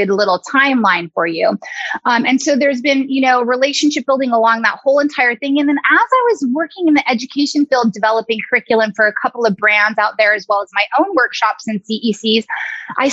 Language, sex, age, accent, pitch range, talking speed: English, female, 20-39, American, 220-285 Hz, 210 wpm